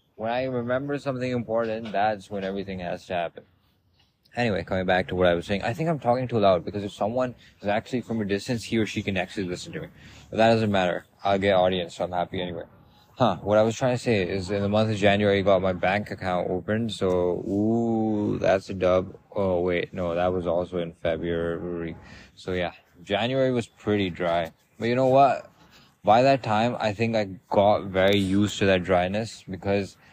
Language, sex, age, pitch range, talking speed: English, male, 20-39, 90-110 Hz, 215 wpm